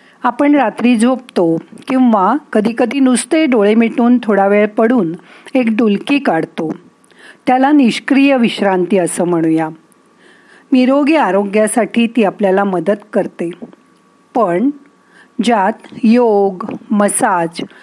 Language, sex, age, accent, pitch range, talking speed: Marathi, female, 50-69, native, 195-250 Hz, 100 wpm